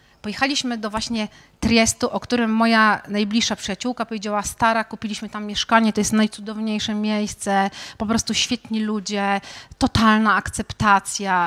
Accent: native